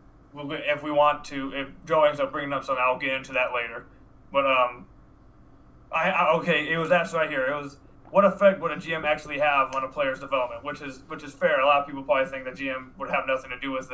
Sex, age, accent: male, 20-39, American